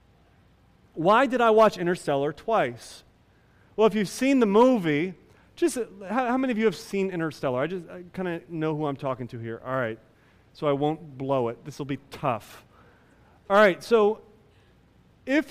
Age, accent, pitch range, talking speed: 30-49, American, 185-275 Hz, 180 wpm